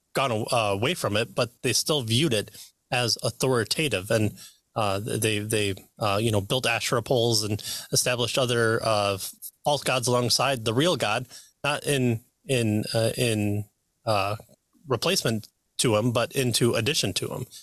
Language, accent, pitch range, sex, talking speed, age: English, American, 105-140 Hz, male, 155 wpm, 30-49